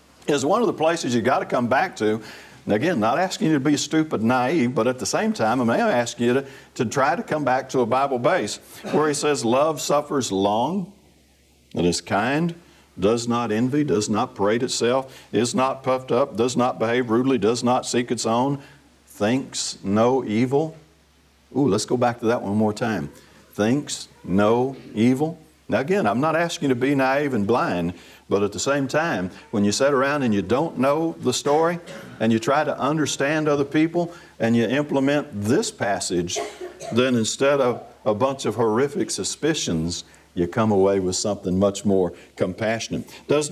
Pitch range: 100-140 Hz